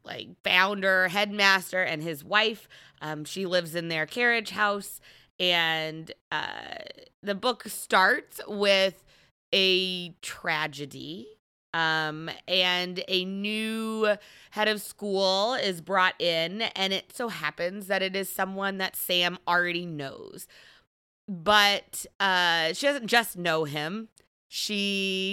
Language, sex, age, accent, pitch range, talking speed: English, female, 20-39, American, 165-205 Hz, 120 wpm